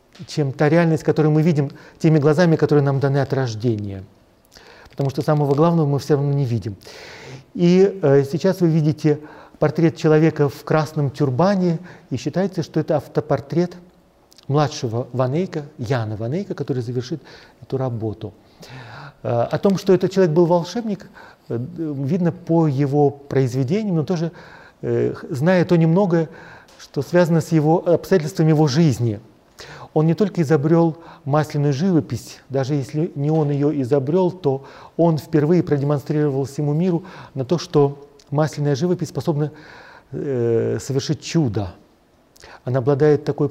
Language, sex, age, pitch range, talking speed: Russian, male, 40-59, 140-165 Hz, 140 wpm